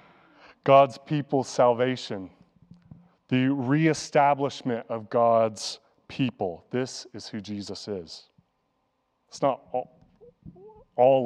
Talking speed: 90 wpm